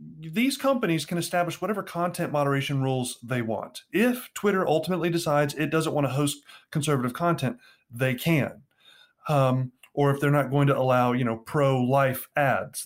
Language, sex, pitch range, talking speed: English, male, 120-160 Hz, 170 wpm